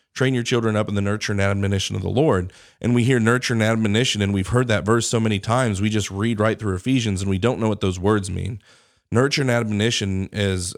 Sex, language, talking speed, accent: male, English, 245 wpm, American